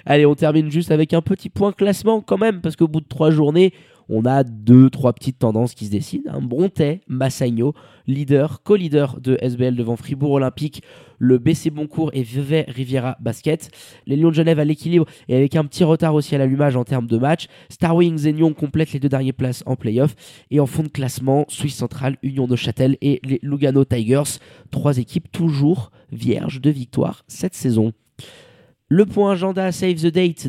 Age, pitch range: 20-39, 130-155 Hz